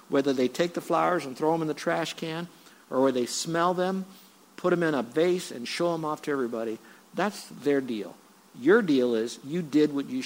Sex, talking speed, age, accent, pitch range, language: male, 220 wpm, 50-69, American, 130-170 Hz, English